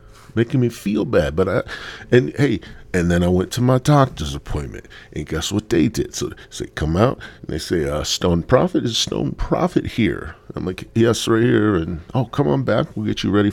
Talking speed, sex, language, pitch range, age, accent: 225 wpm, male, English, 95-130 Hz, 50-69, American